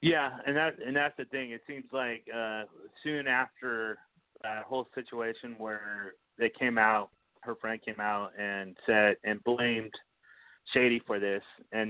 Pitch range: 105-120 Hz